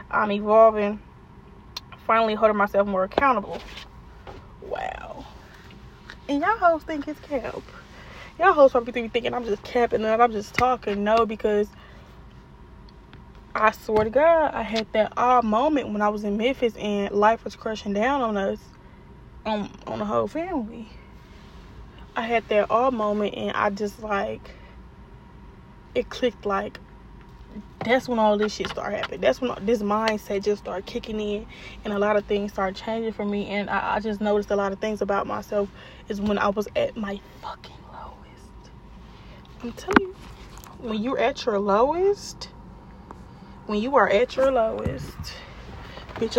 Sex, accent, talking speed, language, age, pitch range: female, American, 160 wpm, English, 10-29, 205-240 Hz